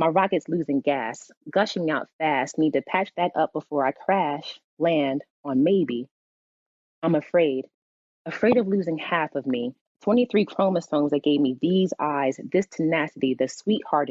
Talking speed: 155 wpm